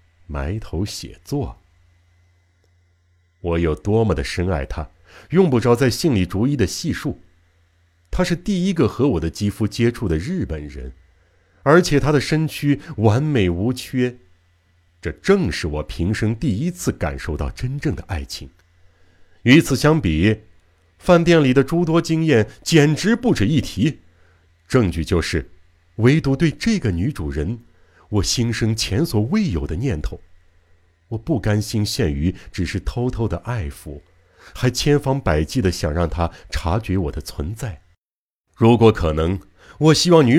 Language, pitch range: Chinese, 85-135 Hz